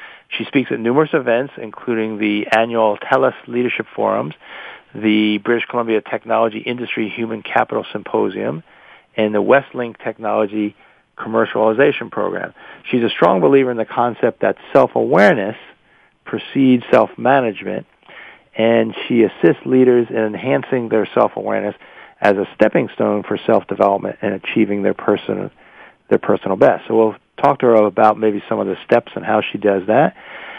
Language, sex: English, male